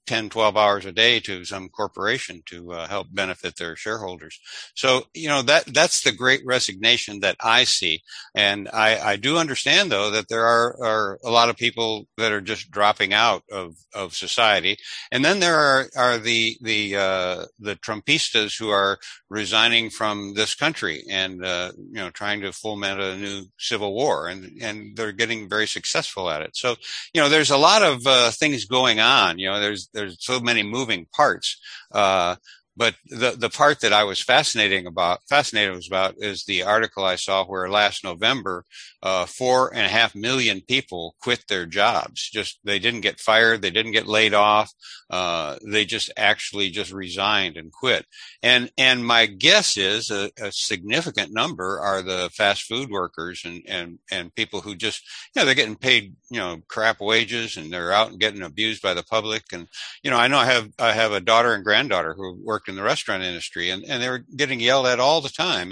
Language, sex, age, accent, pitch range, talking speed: English, male, 60-79, American, 100-120 Hz, 195 wpm